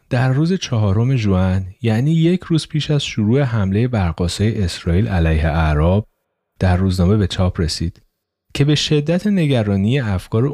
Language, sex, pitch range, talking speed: Persian, male, 90-135 Hz, 140 wpm